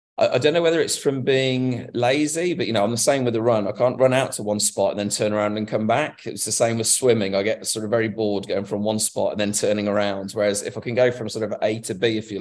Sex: male